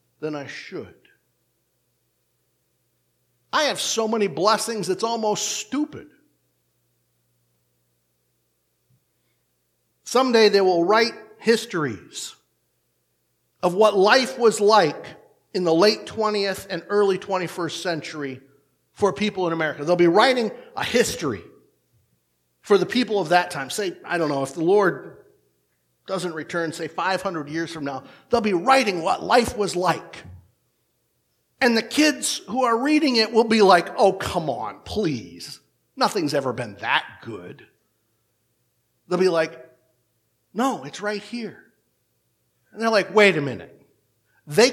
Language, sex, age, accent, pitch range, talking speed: English, male, 50-69, American, 135-220 Hz, 130 wpm